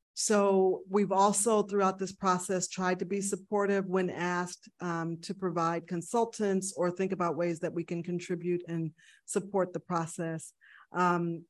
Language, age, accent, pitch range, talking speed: English, 40-59, American, 175-200 Hz, 150 wpm